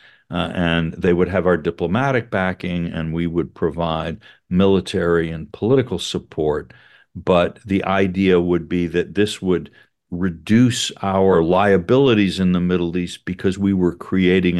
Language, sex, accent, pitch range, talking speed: English, male, American, 85-100 Hz, 145 wpm